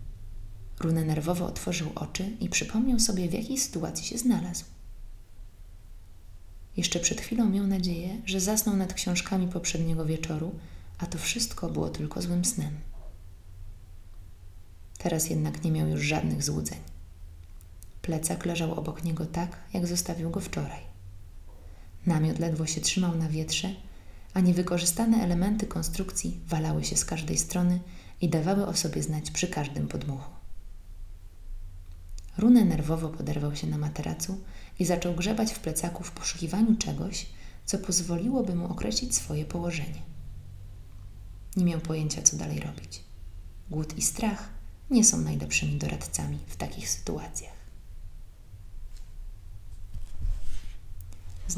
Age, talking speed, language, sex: 20-39, 125 wpm, Polish, female